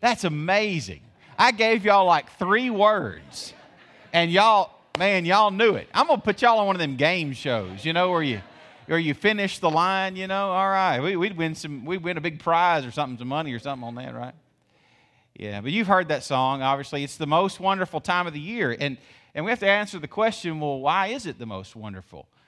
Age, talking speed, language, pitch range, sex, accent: 40-59, 230 wpm, English, 135-170 Hz, male, American